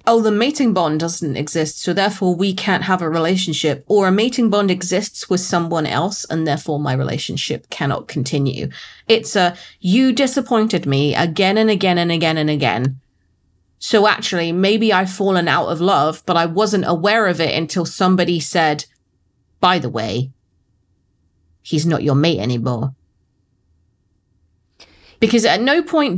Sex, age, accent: female, 30-49, British